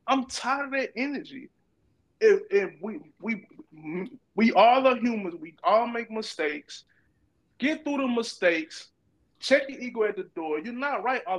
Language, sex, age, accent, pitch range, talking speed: English, male, 20-39, American, 190-250 Hz, 165 wpm